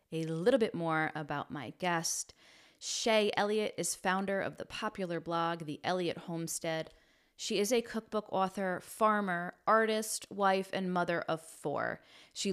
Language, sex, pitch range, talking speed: English, female, 165-215 Hz, 150 wpm